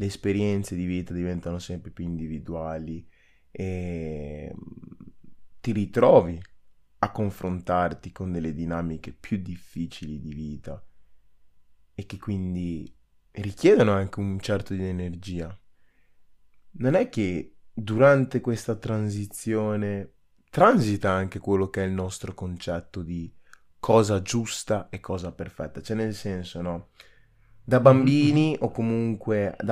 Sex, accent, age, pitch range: male, native, 20-39, 85-105 Hz